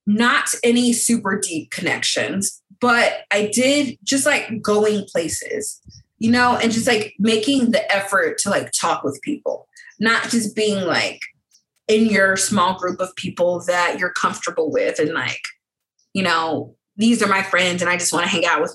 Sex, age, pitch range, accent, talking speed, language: female, 20-39, 180-235 Hz, American, 175 wpm, English